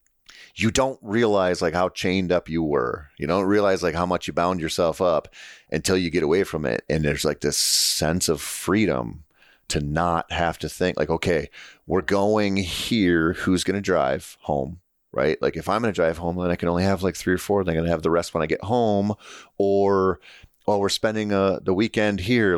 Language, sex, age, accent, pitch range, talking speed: English, male, 30-49, American, 80-95 Hz, 225 wpm